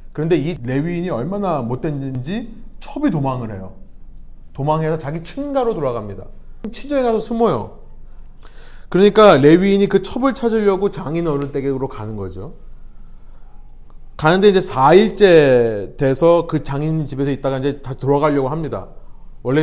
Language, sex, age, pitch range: Korean, male, 30-49, 130-185 Hz